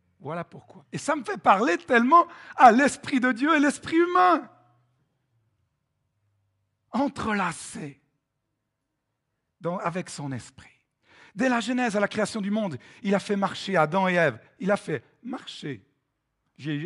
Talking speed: 140 wpm